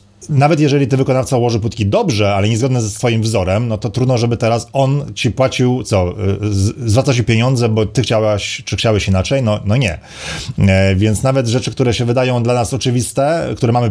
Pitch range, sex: 105-130 Hz, male